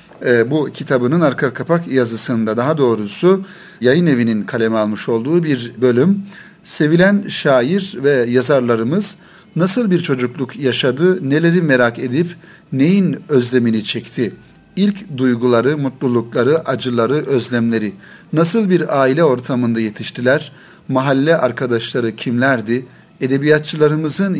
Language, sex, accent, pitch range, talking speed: Turkish, male, native, 125-170 Hz, 105 wpm